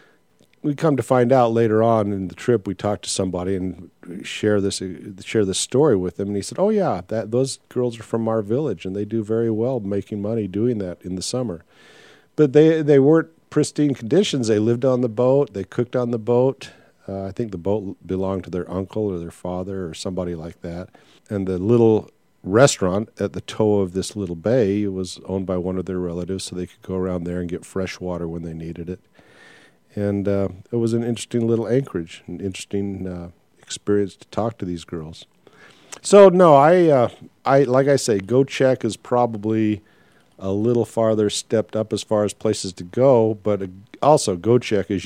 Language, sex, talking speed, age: English, male, 205 wpm, 50-69